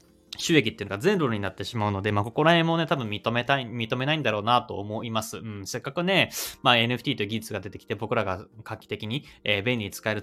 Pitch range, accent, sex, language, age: 100-125 Hz, native, male, Japanese, 20-39